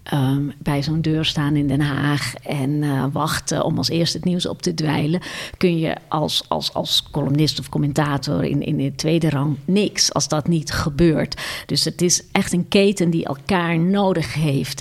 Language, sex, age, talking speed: Dutch, female, 50-69, 190 wpm